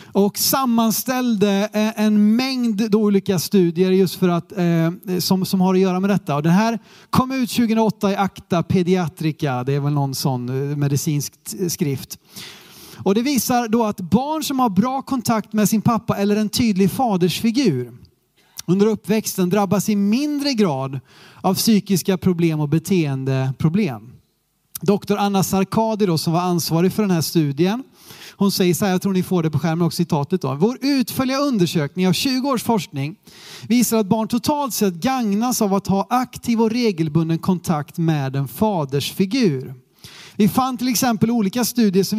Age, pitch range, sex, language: 30-49, 165-220 Hz, male, Swedish